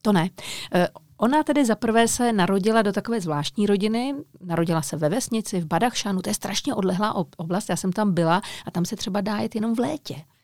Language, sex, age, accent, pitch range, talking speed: Czech, female, 40-59, native, 175-215 Hz, 200 wpm